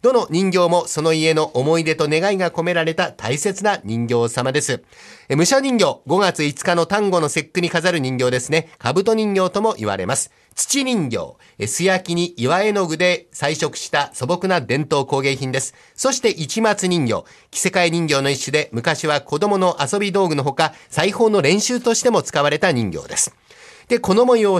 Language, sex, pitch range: Japanese, male, 150-200 Hz